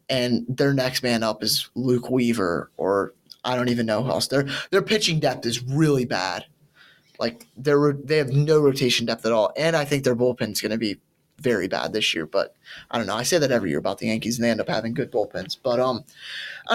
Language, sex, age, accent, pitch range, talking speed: English, male, 20-39, American, 120-145 Hz, 235 wpm